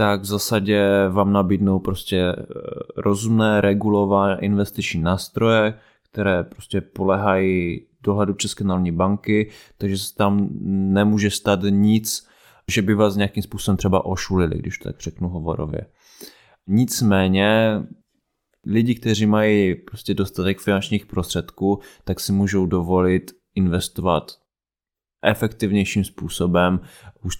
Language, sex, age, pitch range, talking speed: Czech, male, 20-39, 90-105 Hz, 105 wpm